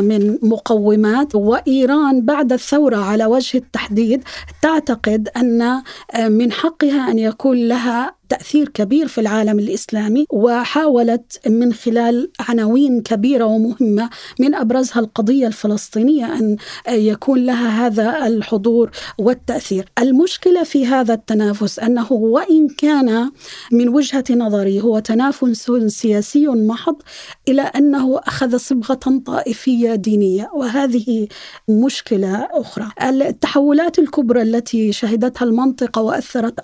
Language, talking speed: Arabic, 105 wpm